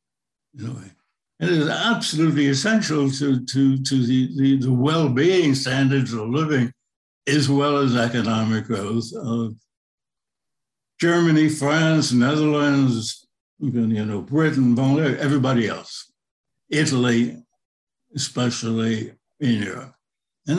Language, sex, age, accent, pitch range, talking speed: English, male, 60-79, American, 115-150 Hz, 100 wpm